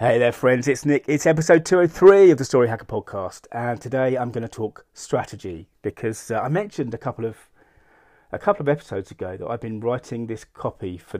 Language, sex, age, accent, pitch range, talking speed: English, male, 30-49, British, 100-130 Hz, 210 wpm